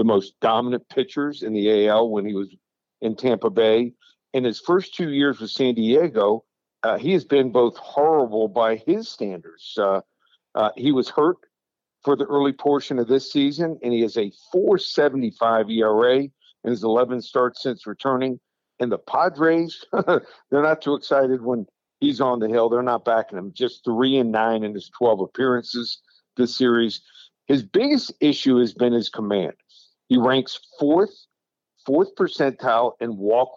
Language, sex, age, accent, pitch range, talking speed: English, male, 50-69, American, 115-150 Hz, 165 wpm